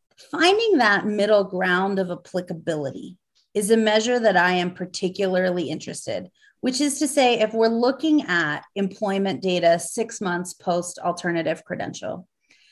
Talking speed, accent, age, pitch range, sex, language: 135 wpm, American, 30-49, 195-280 Hz, female, English